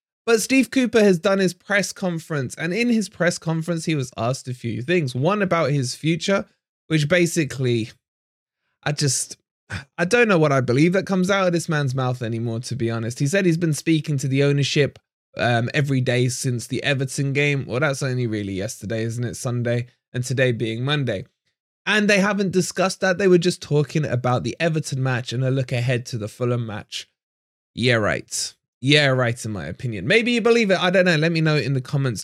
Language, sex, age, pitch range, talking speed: English, male, 20-39, 125-180 Hz, 210 wpm